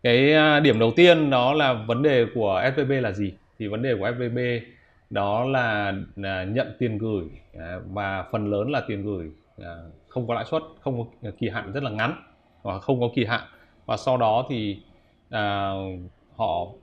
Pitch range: 100-125 Hz